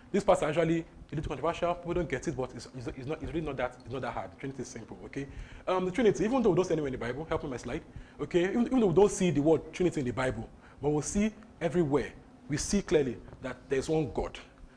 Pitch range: 125-180 Hz